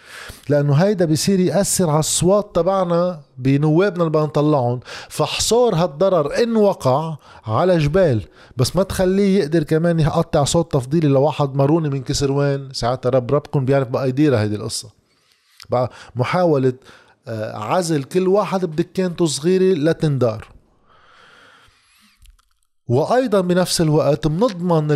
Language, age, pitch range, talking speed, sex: Arabic, 20-39, 130-175 Hz, 120 wpm, male